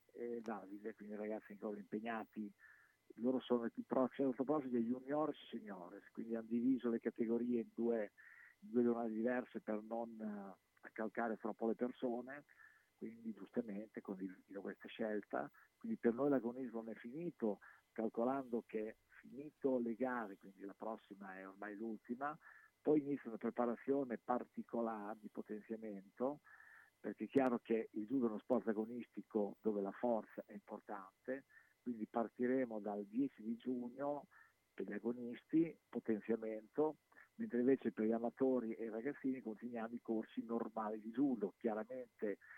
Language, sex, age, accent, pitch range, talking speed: Italian, male, 50-69, native, 110-125 Hz, 150 wpm